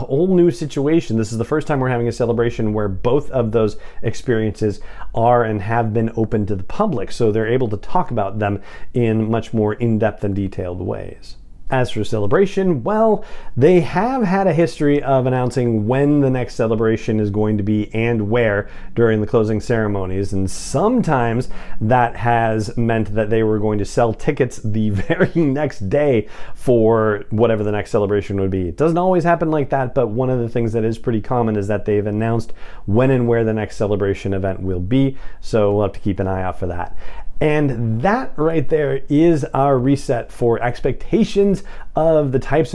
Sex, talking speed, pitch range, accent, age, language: male, 190 wpm, 105-135 Hz, American, 40-59, English